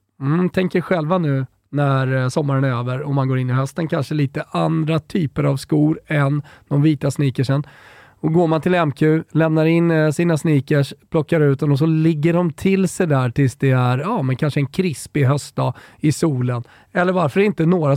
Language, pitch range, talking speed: Swedish, 135-185 Hz, 195 wpm